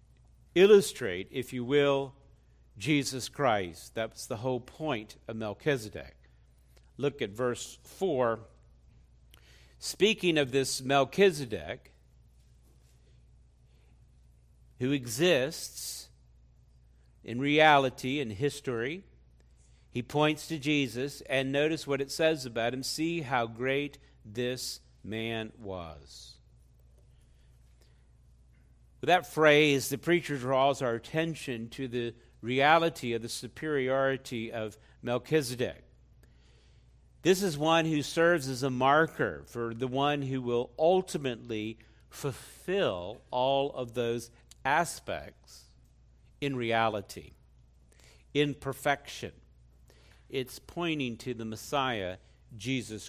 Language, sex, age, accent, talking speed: English, male, 50-69, American, 100 wpm